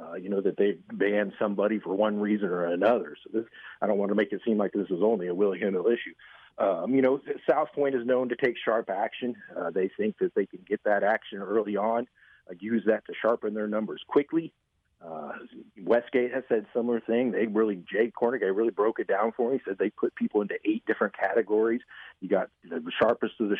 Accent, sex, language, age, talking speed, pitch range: American, male, English, 40-59, 230 wpm, 105-130 Hz